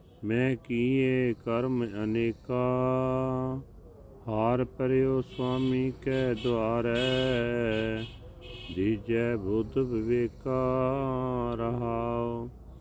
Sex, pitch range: male, 115-130 Hz